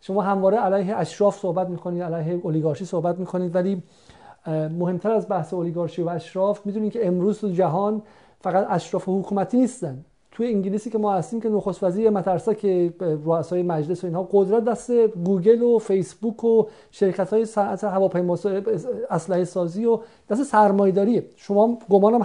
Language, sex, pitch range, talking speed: Persian, male, 180-225 Hz, 155 wpm